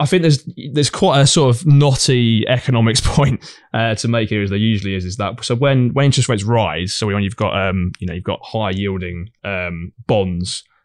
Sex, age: male, 20-39